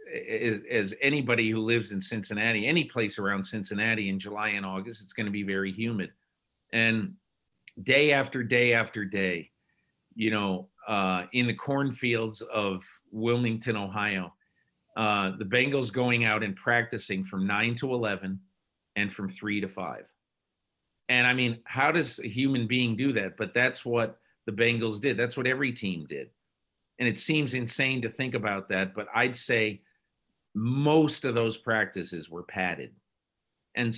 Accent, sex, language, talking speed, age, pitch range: American, male, English, 160 wpm, 50-69, 100-125 Hz